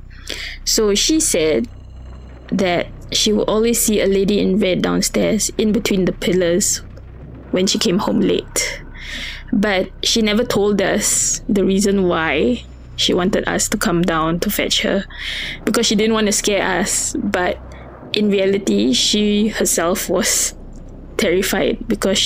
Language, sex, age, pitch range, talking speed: English, female, 20-39, 185-220 Hz, 145 wpm